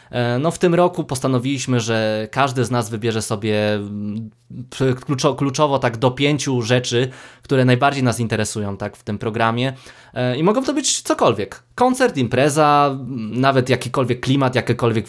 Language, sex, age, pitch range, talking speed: Polish, male, 20-39, 115-140 Hz, 145 wpm